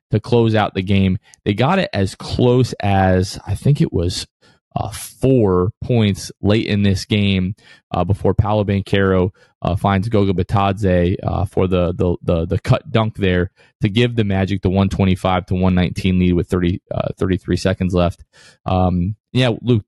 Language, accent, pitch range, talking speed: English, American, 95-110 Hz, 170 wpm